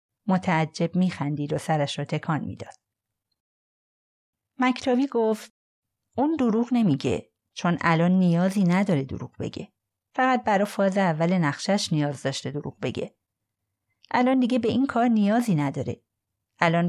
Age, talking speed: 30-49, 130 wpm